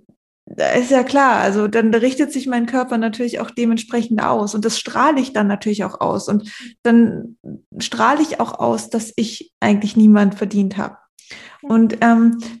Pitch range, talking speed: 220-260 Hz, 160 wpm